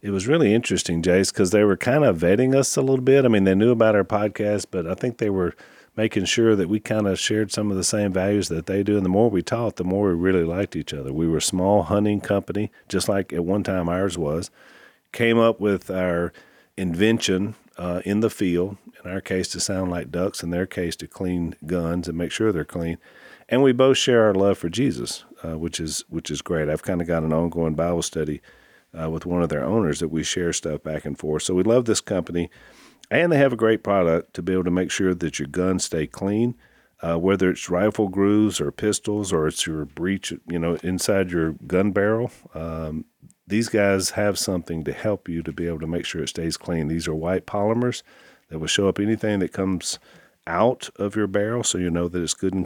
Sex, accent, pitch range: male, American, 85-105 Hz